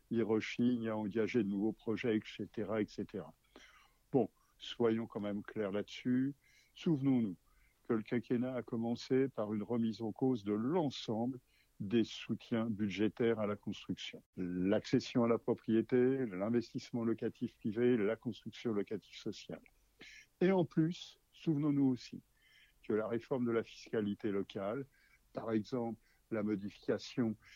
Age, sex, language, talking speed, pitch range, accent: 60-79, male, French, 135 wpm, 105-125 Hz, French